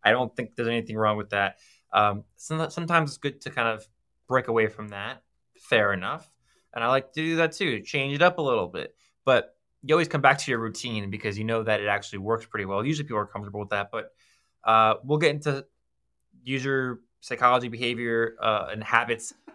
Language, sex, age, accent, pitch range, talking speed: English, male, 20-39, American, 110-145 Hz, 210 wpm